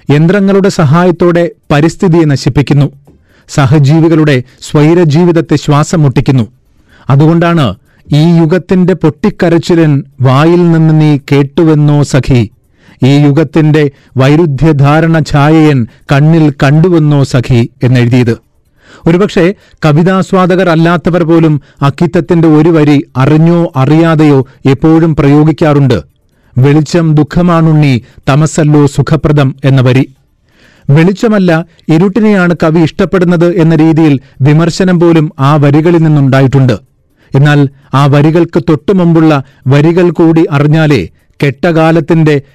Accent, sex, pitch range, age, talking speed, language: native, male, 140-165 Hz, 40-59, 85 wpm, Malayalam